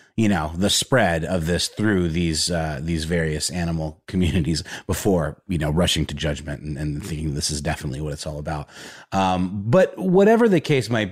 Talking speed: 190 wpm